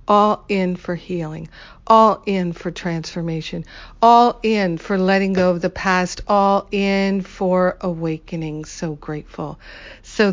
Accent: American